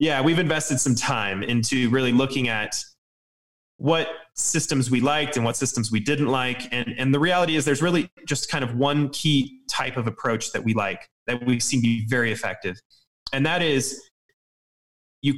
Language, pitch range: English, 115-145 Hz